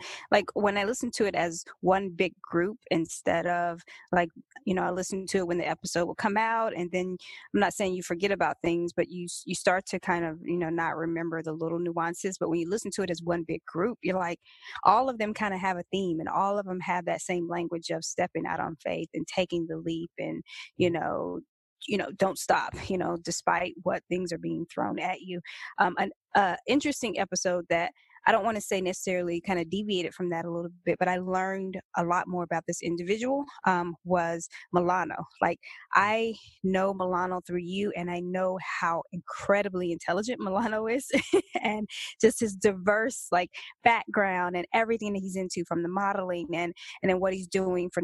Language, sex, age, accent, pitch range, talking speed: English, female, 20-39, American, 175-200 Hz, 210 wpm